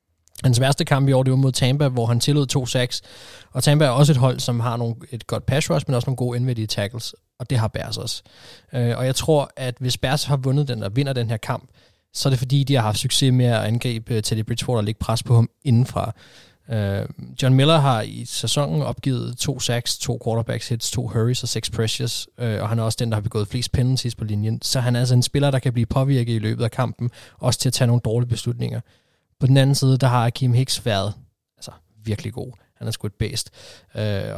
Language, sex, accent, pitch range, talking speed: Danish, male, native, 115-135 Hz, 245 wpm